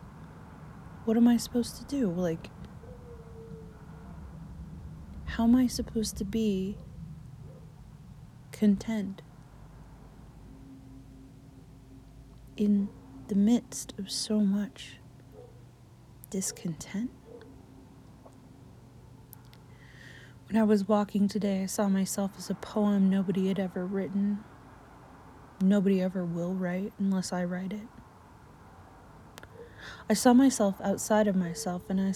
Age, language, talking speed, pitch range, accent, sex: 30-49, English, 95 wpm, 145-200 Hz, American, female